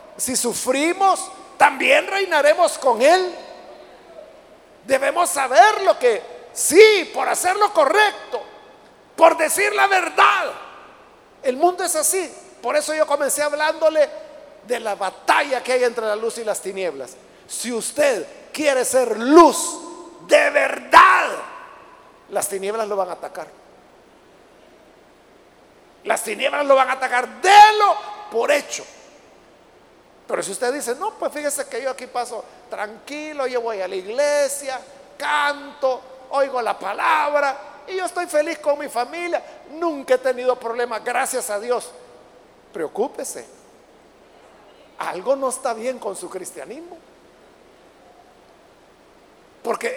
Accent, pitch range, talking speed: Mexican, 245-335 Hz, 125 wpm